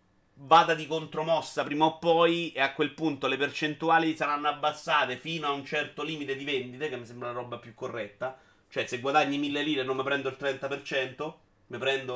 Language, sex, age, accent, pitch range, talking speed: Italian, male, 30-49, native, 120-160 Hz, 195 wpm